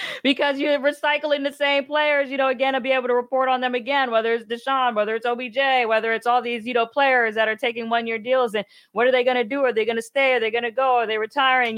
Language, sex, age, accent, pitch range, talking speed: English, female, 20-39, American, 195-250 Hz, 285 wpm